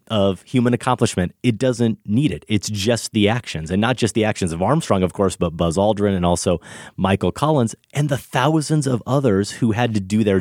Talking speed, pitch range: 215 wpm, 95-120 Hz